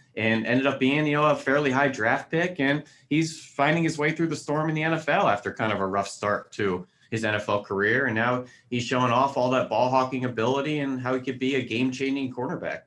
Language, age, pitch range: English, 30-49, 105-130 Hz